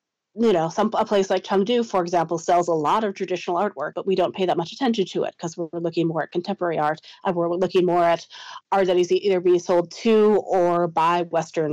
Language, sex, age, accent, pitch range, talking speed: English, female, 30-49, American, 165-200 Hz, 235 wpm